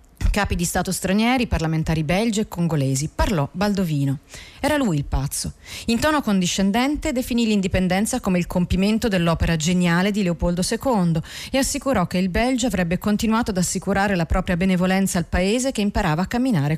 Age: 40-59